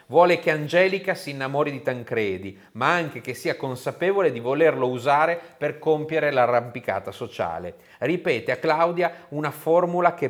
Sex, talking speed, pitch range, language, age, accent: male, 145 wpm, 120-165 Hz, Italian, 40-59, native